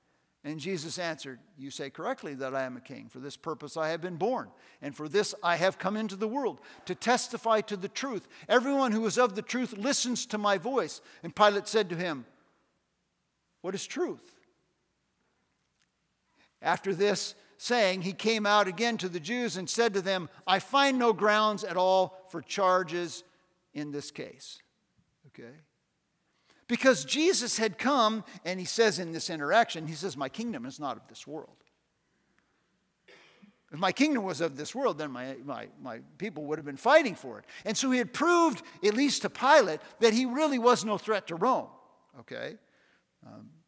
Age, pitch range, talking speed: 50-69, 180-240 Hz, 180 wpm